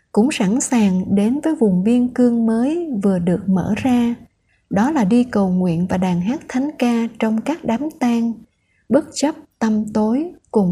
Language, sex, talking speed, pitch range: Vietnamese, female, 180 wpm, 205-255 Hz